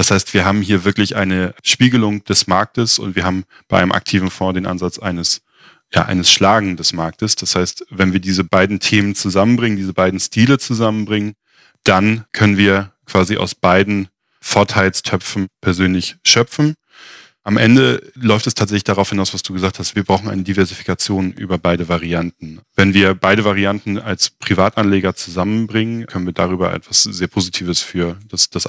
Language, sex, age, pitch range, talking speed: German, male, 10-29, 95-110 Hz, 165 wpm